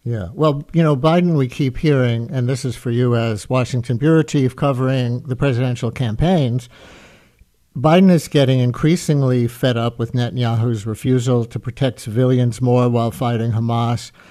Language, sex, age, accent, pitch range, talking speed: English, male, 60-79, American, 120-140 Hz, 155 wpm